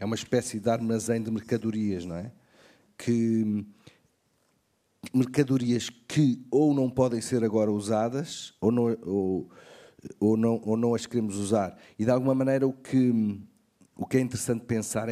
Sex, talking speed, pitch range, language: male, 130 wpm, 100-120 Hz, French